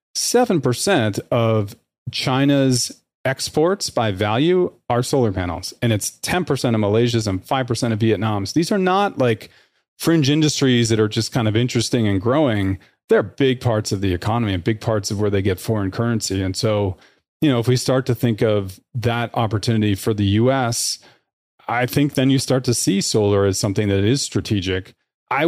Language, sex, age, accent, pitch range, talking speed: English, male, 40-59, American, 105-130 Hz, 175 wpm